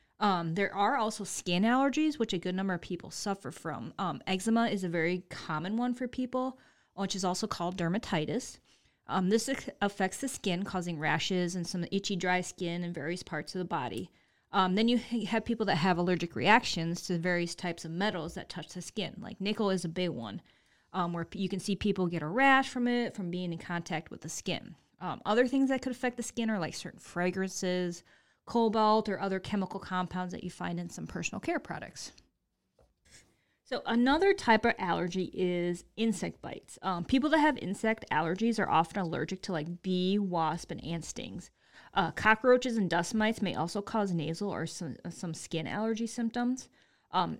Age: 30-49